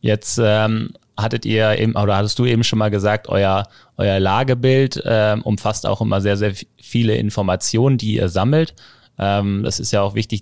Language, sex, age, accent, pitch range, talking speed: German, male, 20-39, German, 100-120 Hz, 185 wpm